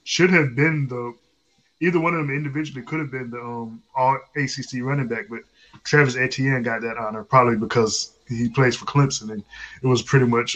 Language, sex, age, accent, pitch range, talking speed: English, male, 20-39, American, 120-140 Hz, 200 wpm